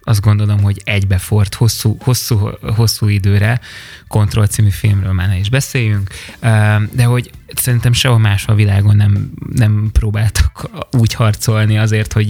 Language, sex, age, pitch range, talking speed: Hungarian, male, 20-39, 100-125 Hz, 140 wpm